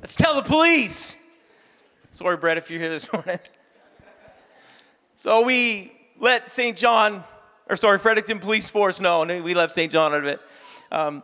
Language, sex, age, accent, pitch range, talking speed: English, male, 40-59, American, 195-240 Hz, 165 wpm